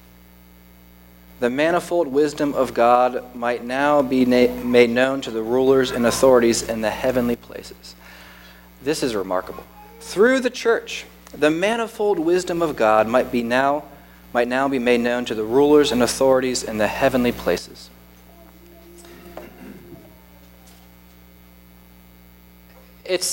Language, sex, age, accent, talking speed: English, male, 30-49, American, 125 wpm